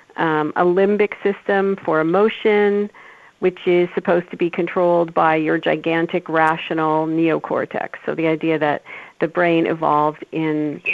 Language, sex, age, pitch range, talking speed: English, female, 50-69, 165-195 Hz, 135 wpm